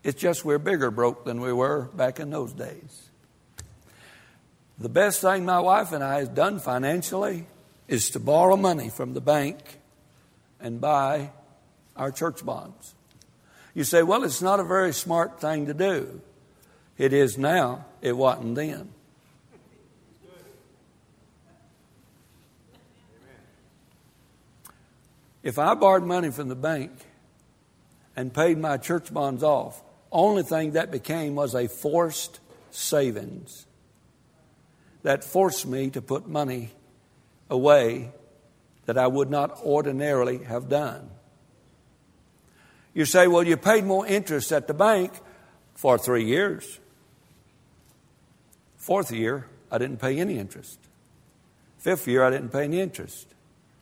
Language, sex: English, male